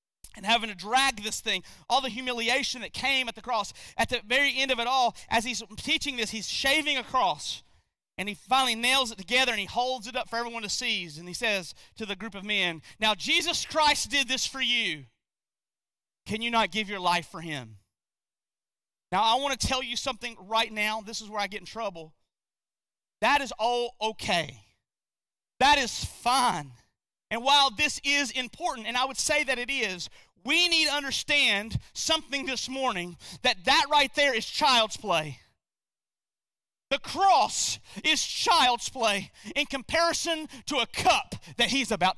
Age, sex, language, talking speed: 30-49, male, English, 185 wpm